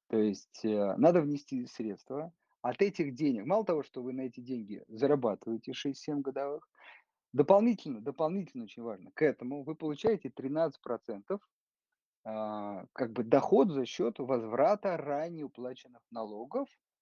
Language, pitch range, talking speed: Russian, 110-170 Hz, 130 wpm